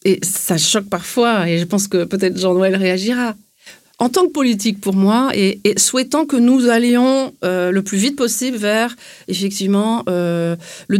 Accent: French